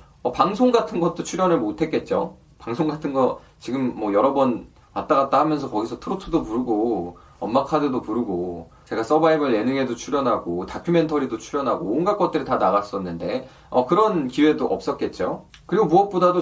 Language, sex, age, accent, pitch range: Korean, male, 20-39, native, 145-195 Hz